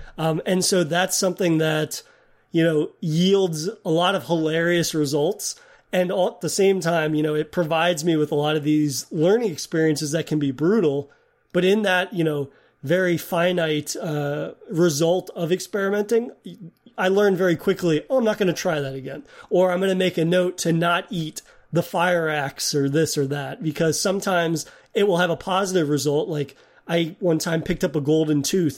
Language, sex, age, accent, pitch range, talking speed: English, male, 30-49, American, 155-185 Hz, 190 wpm